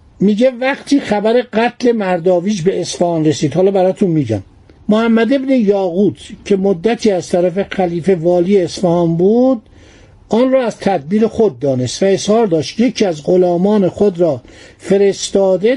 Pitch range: 180-235 Hz